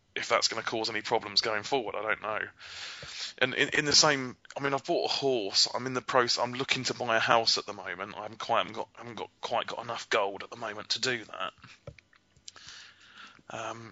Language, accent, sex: English, British, male